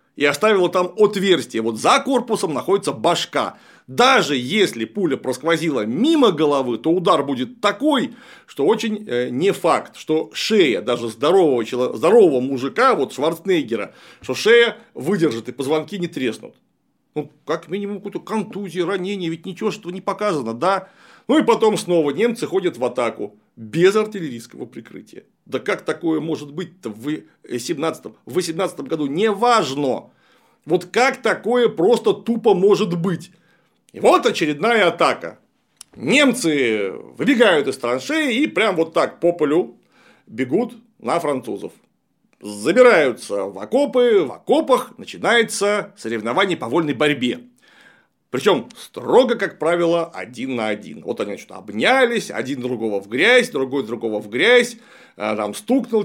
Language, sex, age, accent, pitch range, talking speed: Russian, male, 40-59, native, 150-235 Hz, 135 wpm